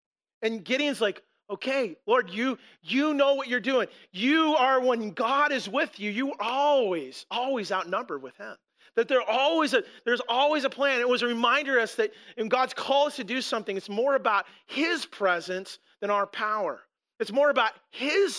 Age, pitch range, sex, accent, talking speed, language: 30-49, 200-270 Hz, male, American, 185 wpm, English